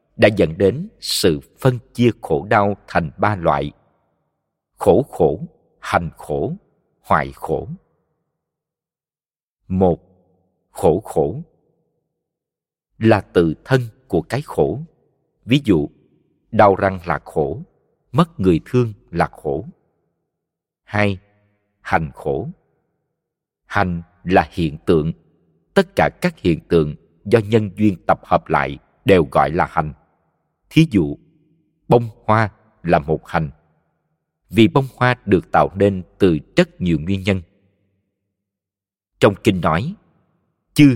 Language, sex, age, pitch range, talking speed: Vietnamese, male, 50-69, 85-125 Hz, 120 wpm